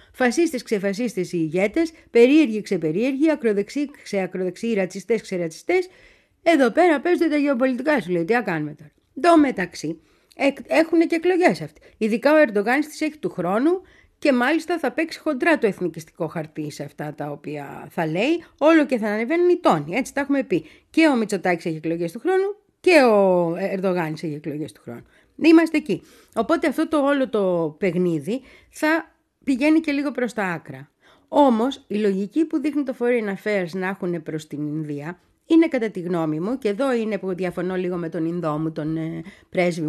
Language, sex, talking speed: Greek, female, 180 wpm